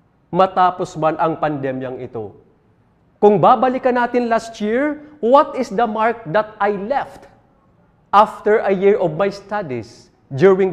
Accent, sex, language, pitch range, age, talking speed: Filipino, male, English, 135-205 Hz, 40-59, 135 wpm